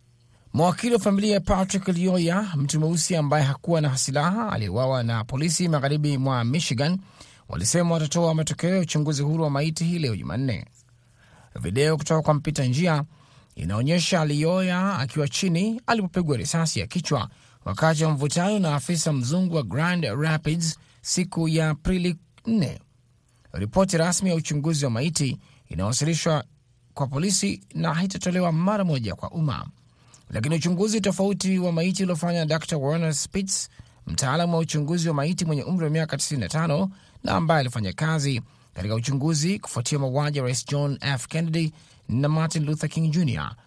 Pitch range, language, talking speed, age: 135-165 Hz, Swahili, 140 wpm, 30-49